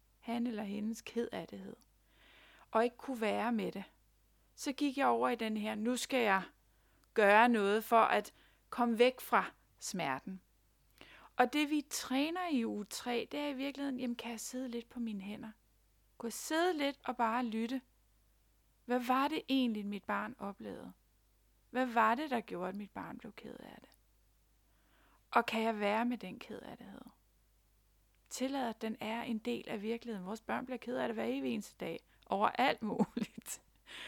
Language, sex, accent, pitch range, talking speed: Danish, female, native, 210-250 Hz, 175 wpm